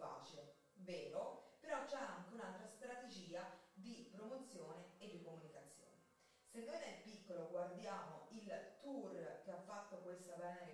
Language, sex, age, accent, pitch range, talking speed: Italian, female, 30-49, native, 175-260 Hz, 130 wpm